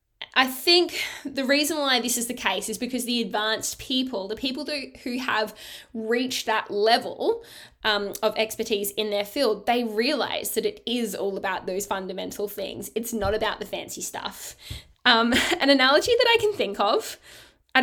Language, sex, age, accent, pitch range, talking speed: English, female, 10-29, Australian, 215-275 Hz, 175 wpm